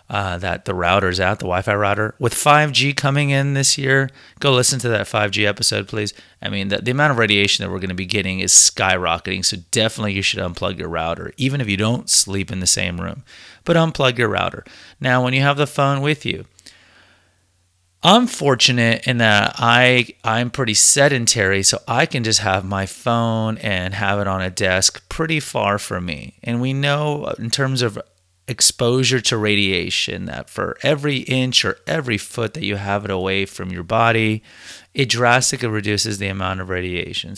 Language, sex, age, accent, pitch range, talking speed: English, male, 30-49, American, 100-125 Hz, 195 wpm